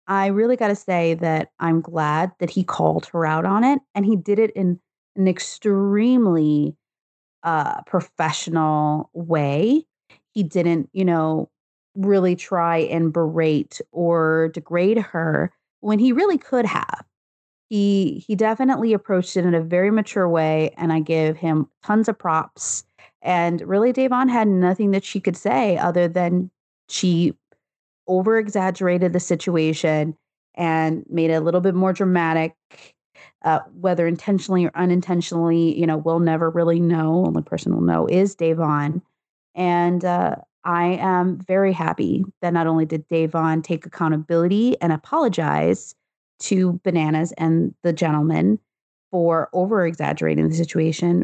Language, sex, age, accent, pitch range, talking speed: English, female, 30-49, American, 160-190 Hz, 145 wpm